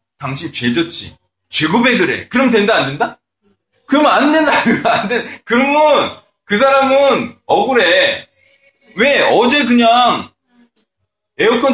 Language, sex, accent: Korean, male, native